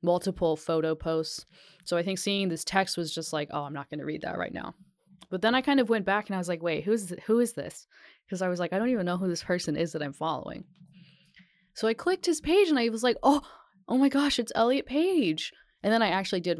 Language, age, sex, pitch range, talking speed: English, 20-39, female, 155-185 Hz, 270 wpm